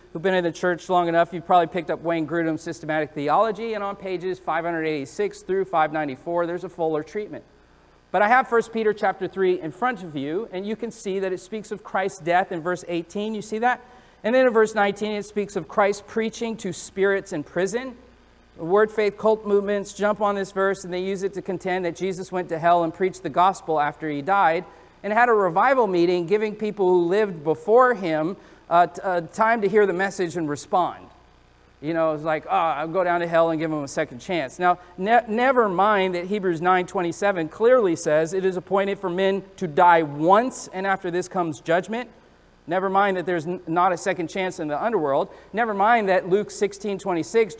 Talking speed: 210 wpm